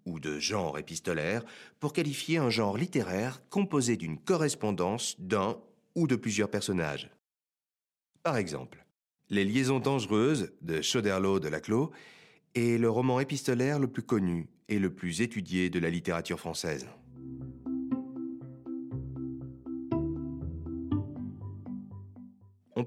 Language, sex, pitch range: French, male, 85-130 Hz